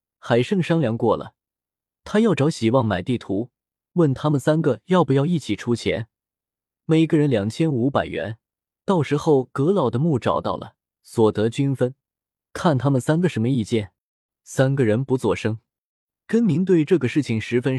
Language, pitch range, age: Chinese, 110-155 Hz, 20-39